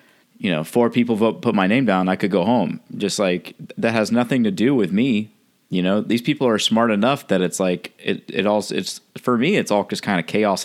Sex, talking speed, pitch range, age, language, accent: male, 250 wpm, 95-155 Hz, 30-49, English, American